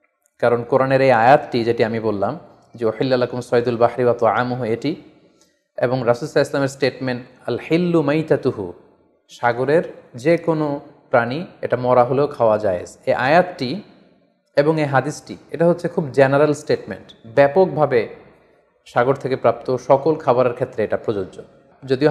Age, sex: 30-49, male